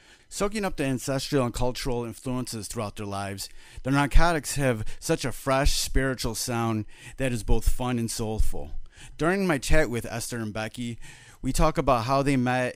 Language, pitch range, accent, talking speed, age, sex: English, 110-135 Hz, American, 175 wpm, 30-49, male